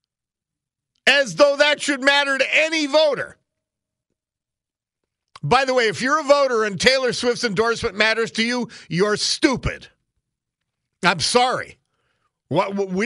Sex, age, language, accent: male, 50-69, English, American